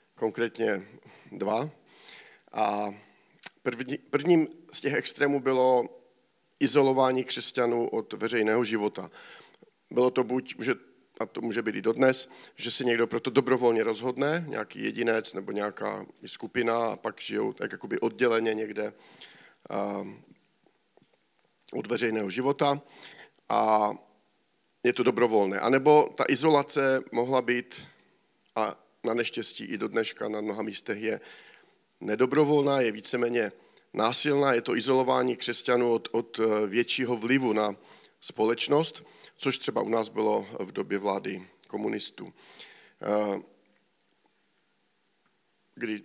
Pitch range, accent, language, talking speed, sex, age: 110-130 Hz, native, Czech, 115 wpm, male, 50-69